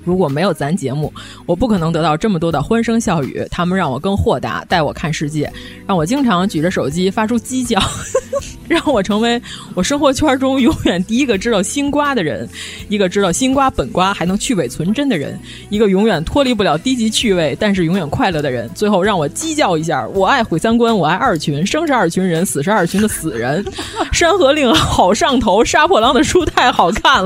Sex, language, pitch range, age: female, Chinese, 180-275 Hz, 20-39